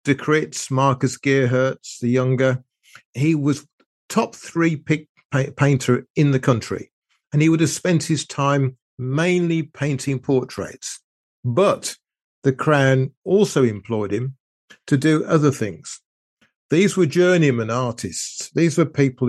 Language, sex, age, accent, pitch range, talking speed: English, male, 50-69, British, 115-150 Hz, 130 wpm